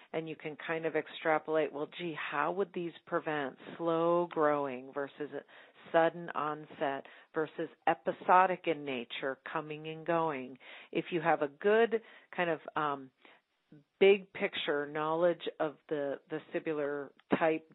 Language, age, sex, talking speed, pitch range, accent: English, 40-59, female, 130 wpm, 145-165 Hz, American